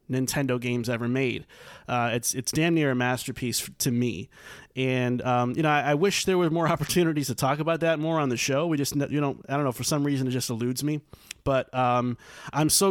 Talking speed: 230 wpm